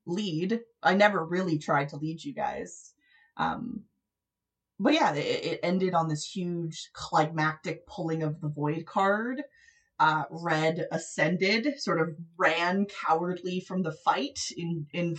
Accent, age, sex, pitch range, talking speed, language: American, 20-39, female, 160-210 Hz, 140 wpm, English